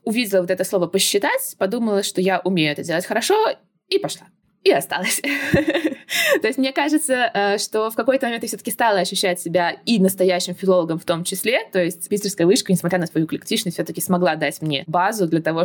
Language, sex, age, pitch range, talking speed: Russian, female, 20-39, 175-230 Hz, 190 wpm